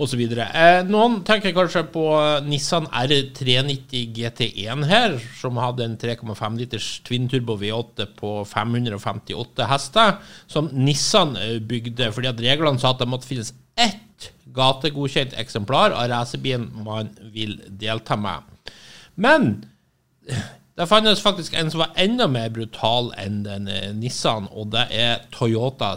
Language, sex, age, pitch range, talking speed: English, male, 50-69, 115-155 Hz, 140 wpm